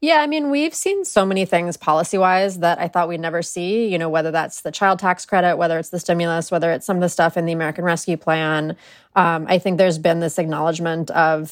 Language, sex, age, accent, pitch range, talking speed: English, female, 20-39, American, 170-235 Hz, 240 wpm